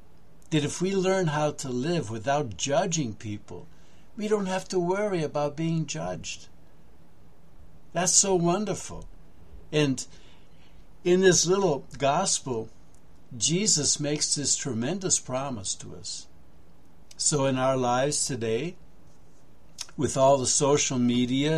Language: English